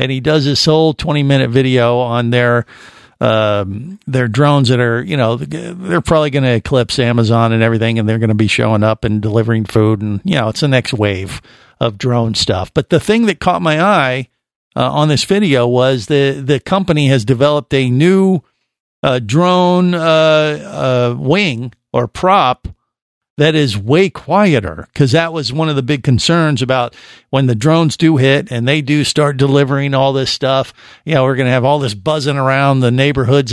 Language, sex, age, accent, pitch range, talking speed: English, male, 50-69, American, 120-155 Hz, 195 wpm